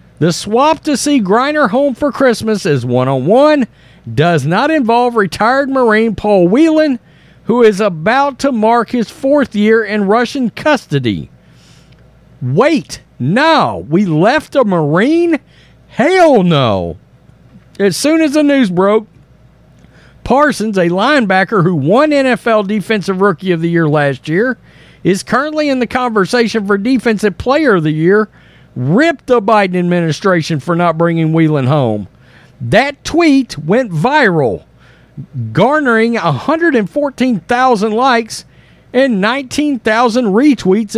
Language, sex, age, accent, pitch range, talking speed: English, male, 50-69, American, 175-270 Hz, 125 wpm